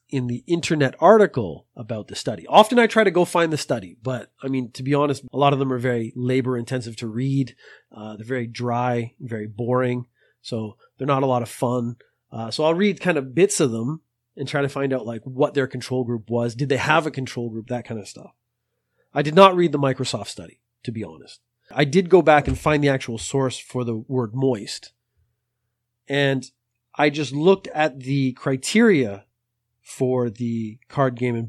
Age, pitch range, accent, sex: 30-49, 120-145 Hz, American, male